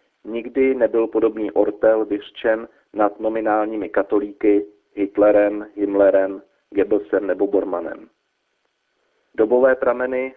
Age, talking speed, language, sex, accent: 40-59, 85 wpm, Czech, male, native